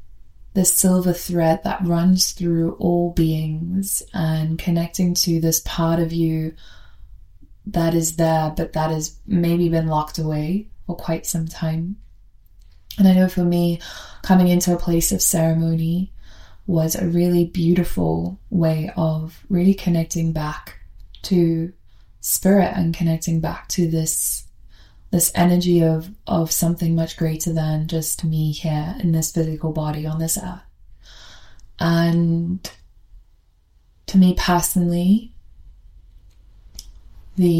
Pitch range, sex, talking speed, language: 155-175 Hz, female, 125 wpm, English